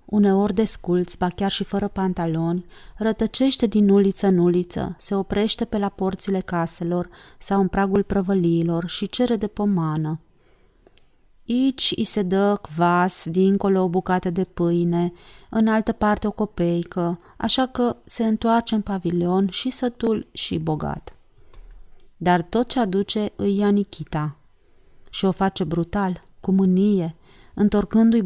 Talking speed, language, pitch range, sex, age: 140 wpm, Romanian, 175-210 Hz, female, 30-49